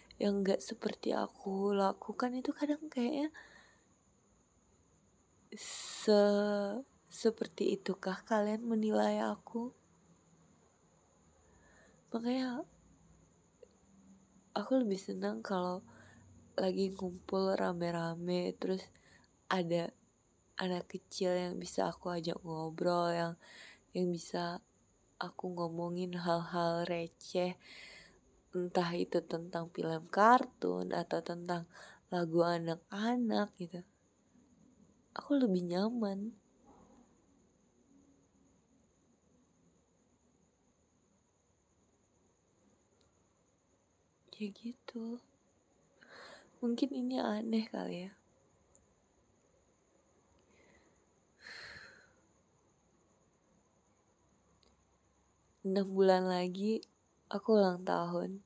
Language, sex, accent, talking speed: Indonesian, female, native, 65 wpm